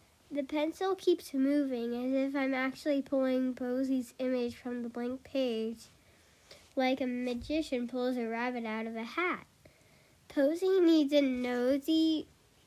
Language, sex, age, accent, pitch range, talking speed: English, female, 10-29, American, 240-295 Hz, 135 wpm